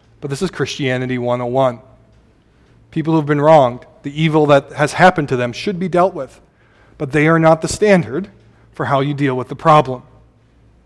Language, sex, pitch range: English, male, 130-175 Hz